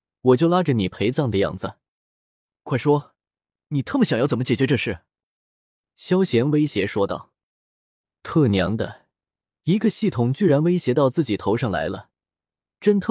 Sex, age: male, 20-39